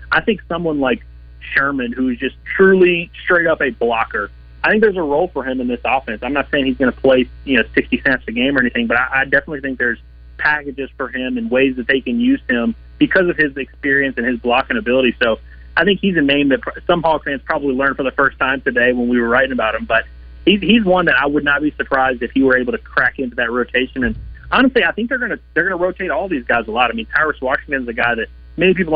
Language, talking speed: English, 265 wpm